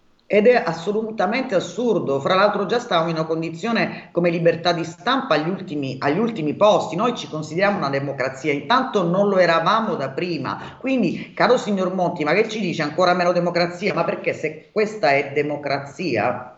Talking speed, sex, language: 175 wpm, female, Italian